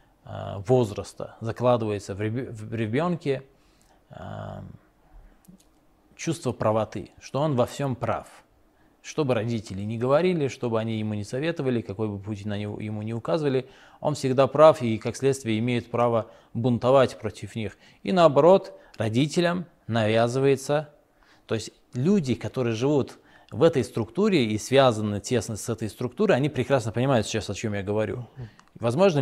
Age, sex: 20-39, male